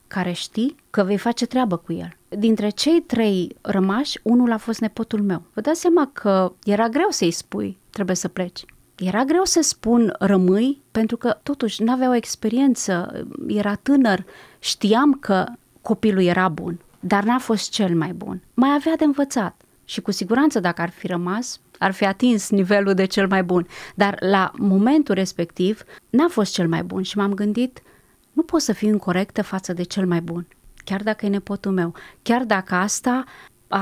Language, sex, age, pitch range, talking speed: Romanian, female, 30-49, 185-240 Hz, 180 wpm